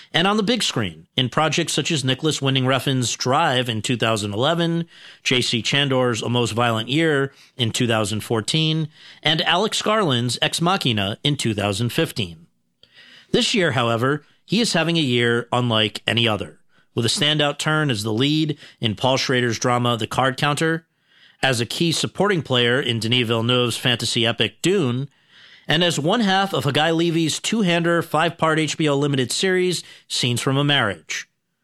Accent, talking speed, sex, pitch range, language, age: American, 155 wpm, male, 125-170 Hz, English, 40-59